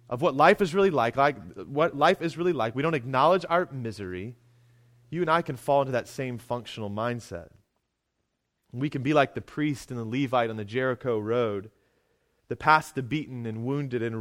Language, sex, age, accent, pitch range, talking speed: English, male, 30-49, American, 115-145 Hz, 200 wpm